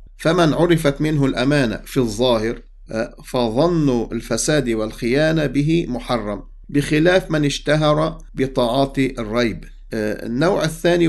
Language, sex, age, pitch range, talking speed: English, male, 50-69, 115-150 Hz, 95 wpm